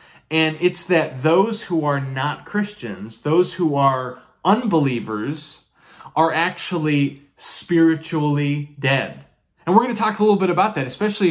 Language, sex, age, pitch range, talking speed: English, male, 20-39, 140-180 Hz, 145 wpm